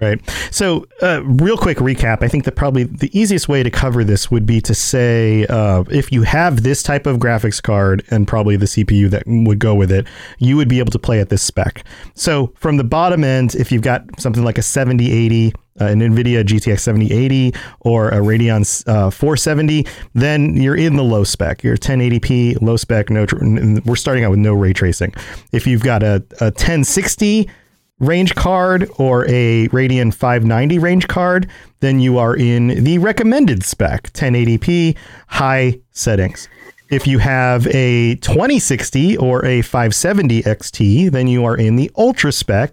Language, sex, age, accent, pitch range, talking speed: English, male, 40-59, American, 110-140 Hz, 180 wpm